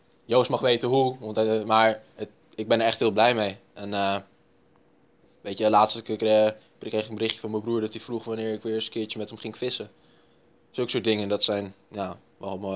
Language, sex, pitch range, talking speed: Dutch, male, 100-110 Hz, 220 wpm